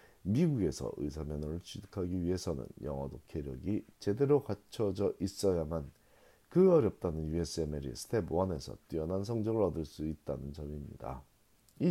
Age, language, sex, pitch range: 40-59, Korean, male, 80-115 Hz